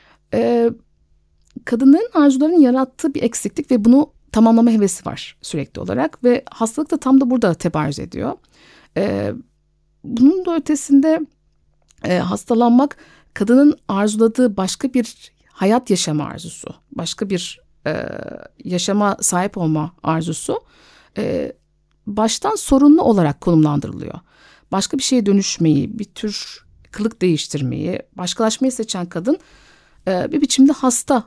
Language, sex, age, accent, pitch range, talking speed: Turkish, female, 60-79, native, 195-285 Hz, 115 wpm